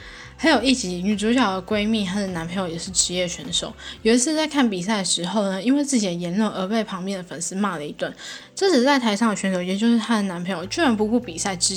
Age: 10-29